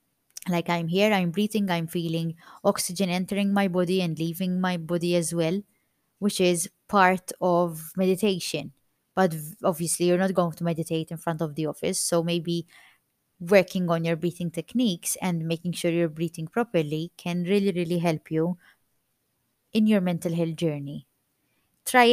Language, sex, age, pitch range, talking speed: English, female, 20-39, 165-200 Hz, 155 wpm